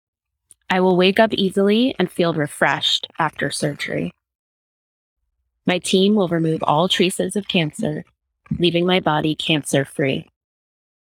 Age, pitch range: 20-39, 120-180 Hz